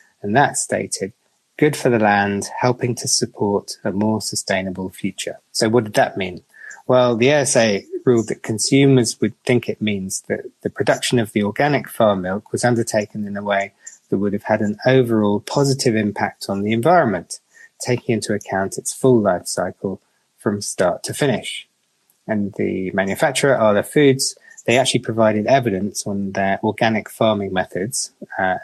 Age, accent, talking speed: 20-39, British, 165 wpm